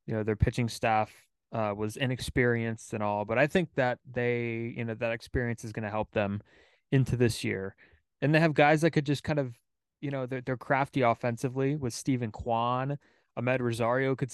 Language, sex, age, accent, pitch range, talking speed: English, male, 20-39, American, 110-130 Hz, 200 wpm